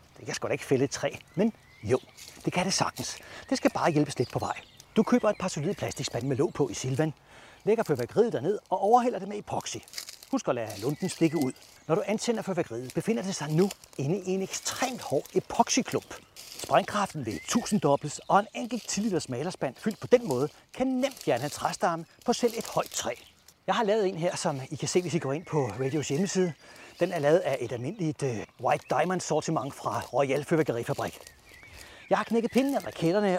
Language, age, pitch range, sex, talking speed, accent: Danish, 40-59, 145-215 Hz, male, 205 wpm, native